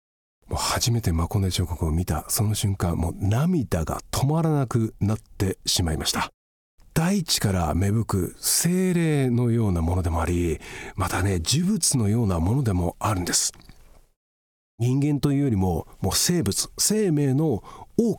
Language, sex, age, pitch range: Japanese, male, 40-59, 90-140 Hz